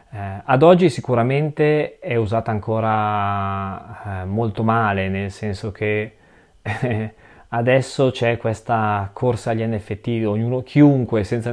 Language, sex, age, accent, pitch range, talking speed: Italian, male, 20-39, native, 105-125 Hz, 105 wpm